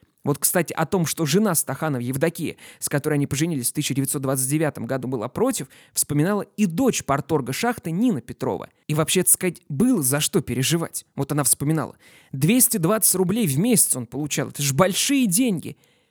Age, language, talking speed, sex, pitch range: 20-39, Russian, 170 wpm, male, 150-210 Hz